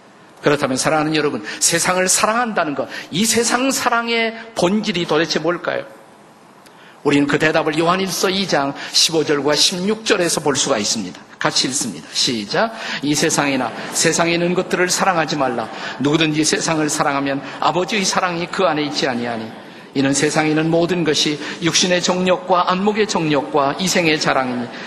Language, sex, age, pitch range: Korean, male, 50-69, 150-200 Hz